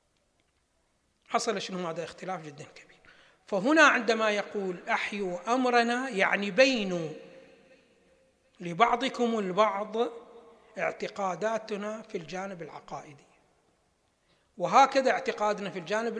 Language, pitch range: Arabic, 180-230 Hz